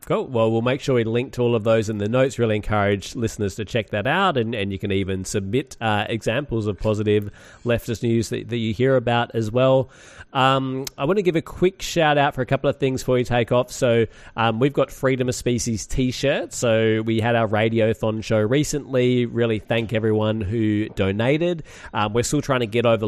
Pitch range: 105-125 Hz